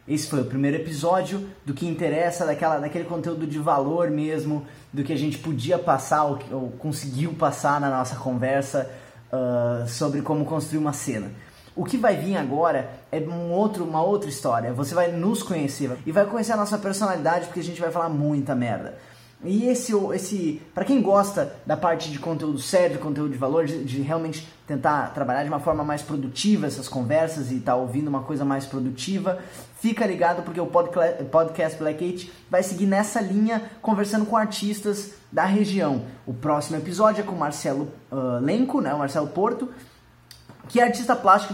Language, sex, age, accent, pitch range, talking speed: Portuguese, male, 20-39, Brazilian, 145-200 Hz, 180 wpm